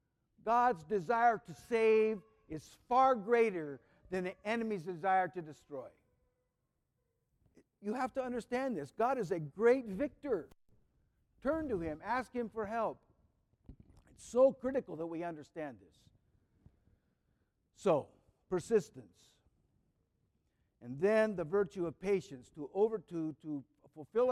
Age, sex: 60-79, male